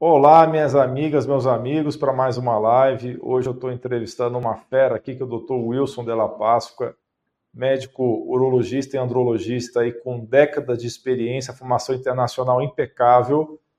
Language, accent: Portuguese, Brazilian